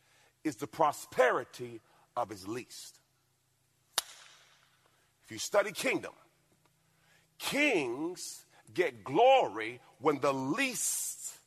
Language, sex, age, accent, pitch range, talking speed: English, male, 40-59, American, 135-205 Hz, 85 wpm